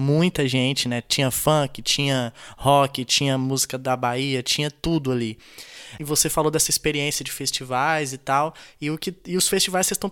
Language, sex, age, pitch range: Portuguese, male, 20-39, 145-195 Hz